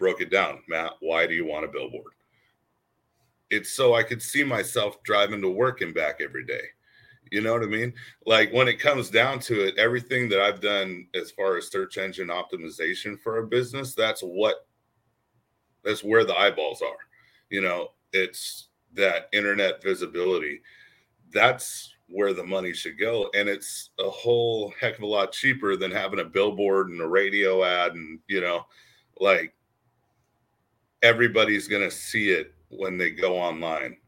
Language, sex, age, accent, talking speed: English, male, 40-59, American, 170 wpm